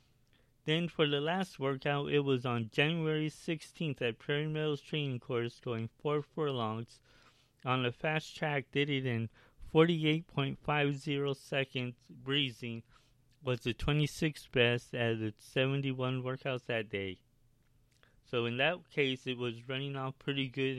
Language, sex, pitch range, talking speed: English, male, 120-145 Hz, 140 wpm